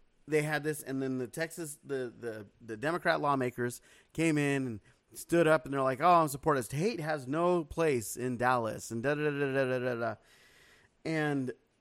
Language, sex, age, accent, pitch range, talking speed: English, male, 30-49, American, 120-155 Hz, 195 wpm